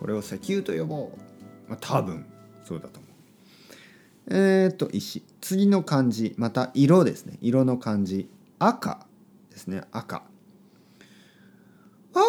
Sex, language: male, Japanese